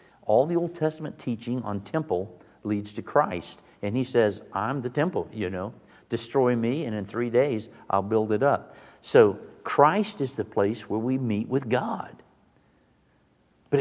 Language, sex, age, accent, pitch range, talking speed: English, male, 60-79, American, 100-130 Hz, 170 wpm